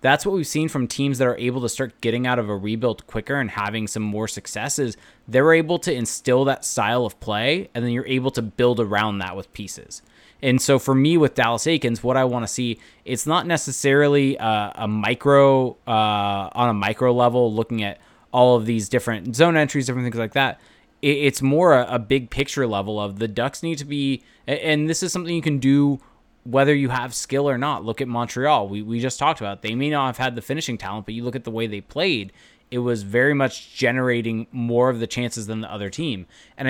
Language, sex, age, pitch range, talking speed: English, male, 20-39, 115-140 Hz, 230 wpm